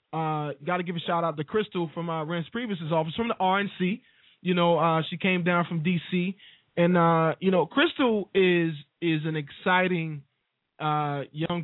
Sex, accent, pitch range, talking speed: male, American, 145-175 Hz, 185 wpm